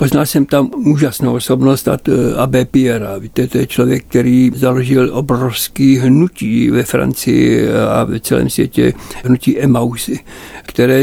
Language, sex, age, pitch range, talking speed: Czech, male, 60-79, 125-150 Hz, 130 wpm